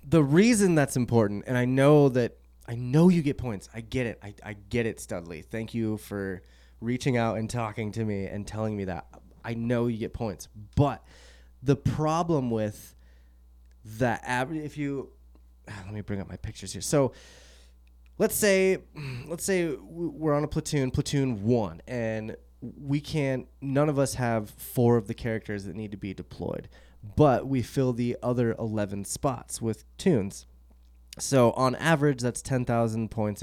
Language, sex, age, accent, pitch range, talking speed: English, male, 20-39, American, 100-135 Hz, 170 wpm